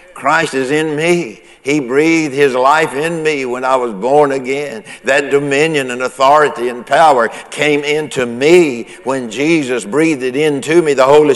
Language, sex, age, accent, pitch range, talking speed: English, male, 60-79, American, 135-160 Hz, 170 wpm